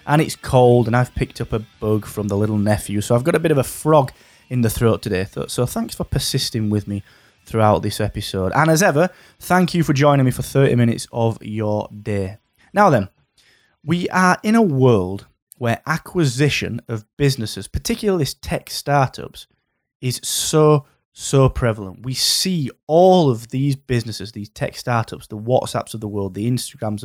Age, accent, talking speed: 20-39, British, 180 wpm